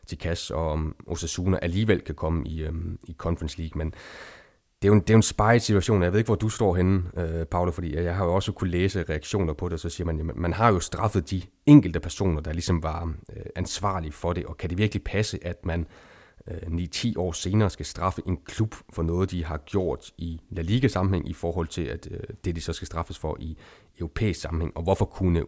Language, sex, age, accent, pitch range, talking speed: Danish, male, 30-49, native, 85-95 Hz, 230 wpm